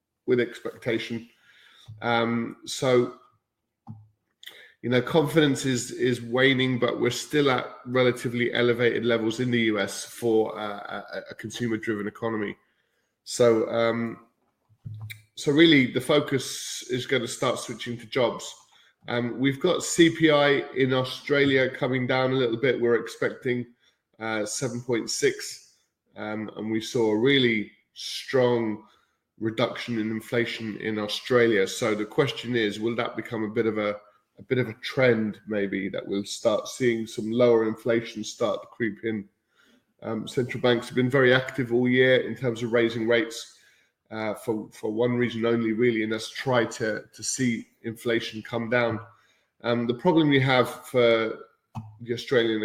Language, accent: English, British